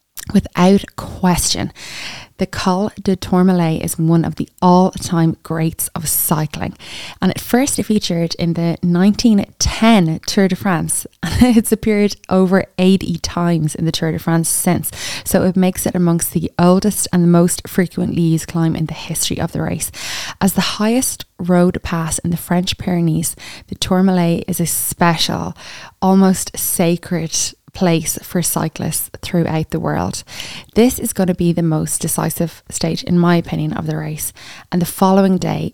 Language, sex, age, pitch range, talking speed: English, female, 20-39, 160-190 Hz, 160 wpm